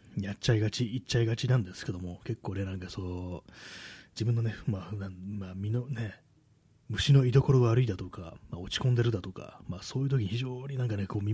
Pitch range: 95-125 Hz